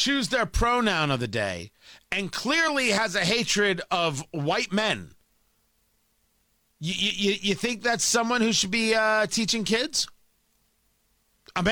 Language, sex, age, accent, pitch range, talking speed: English, male, 40-59, American, 160-230 Hz, 140 wpm